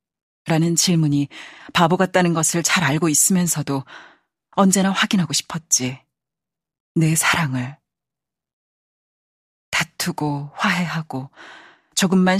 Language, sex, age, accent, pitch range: Korean, female, 40-59, native, 140-180 Hz